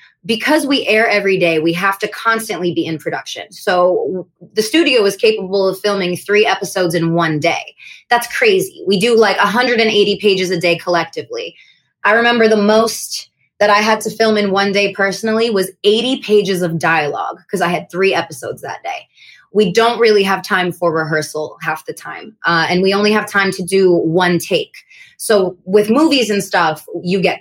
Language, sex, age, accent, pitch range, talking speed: English, female, 20-39, American, 180-220 Hz, 190 wpm